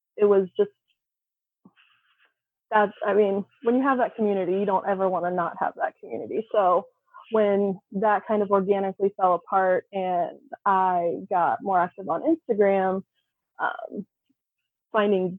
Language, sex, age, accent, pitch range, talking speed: English, female, 20-39, American, 190-220 Hz, 145 wpm